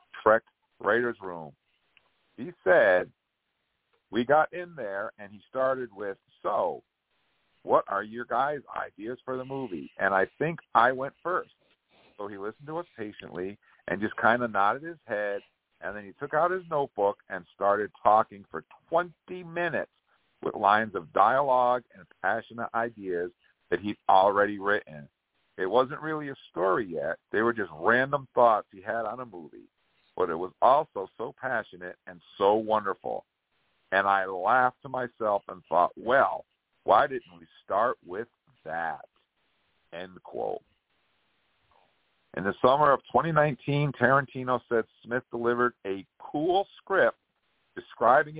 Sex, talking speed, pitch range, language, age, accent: male, 150 wpm, 100-130 Hz, English, 50-69, American